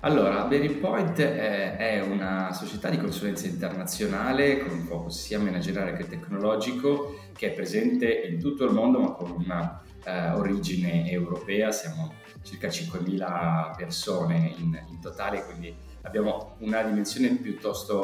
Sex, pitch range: male, 90-140 Hz